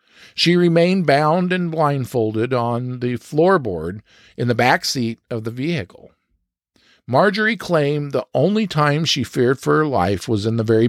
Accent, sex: American, male